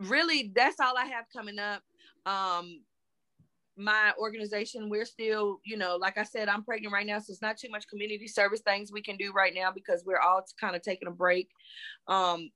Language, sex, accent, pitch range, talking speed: English, female, American, 190-225 Hz, 205 wpm